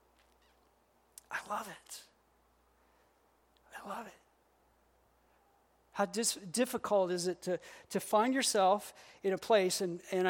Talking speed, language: 115 wpm, English